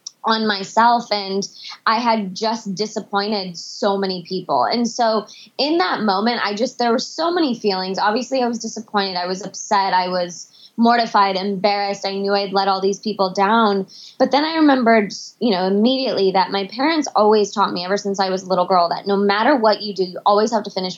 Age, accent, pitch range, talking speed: 20-39, American, 190-230 Hz, 205 wpm